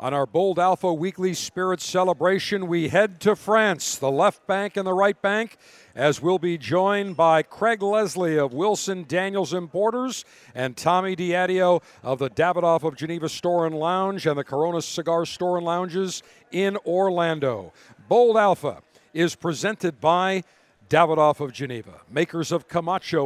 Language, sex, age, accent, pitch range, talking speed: English, male, 50-69, American, 150-190 Hz, 155 wpm